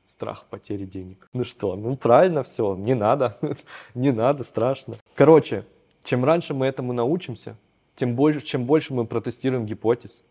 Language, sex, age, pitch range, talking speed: Russian, male, 20-39, 110-125 Hz, 150 wpm